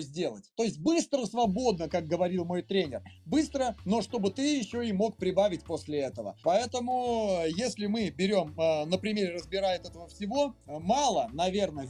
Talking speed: 150 wpm